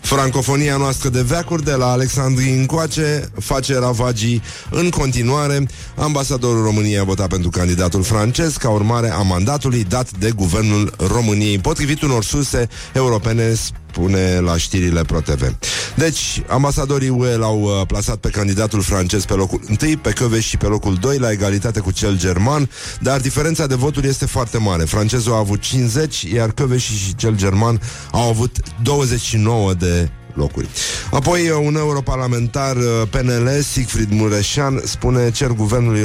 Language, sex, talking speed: Romanian, male, 145 wpm